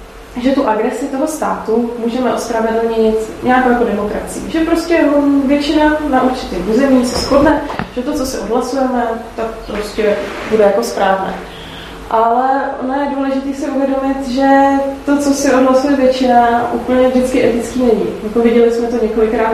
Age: 20-39